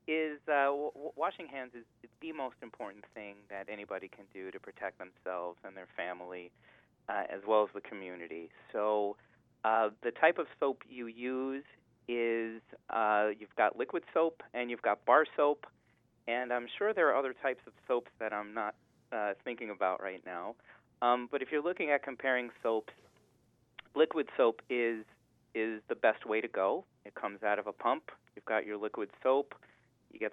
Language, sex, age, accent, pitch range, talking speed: English, male, 30-49, American, 110-125 Hz, 180 wpm